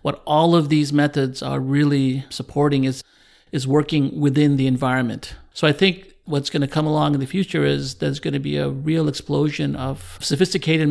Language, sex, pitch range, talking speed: English, male, 130-150 Hz, 195 wpm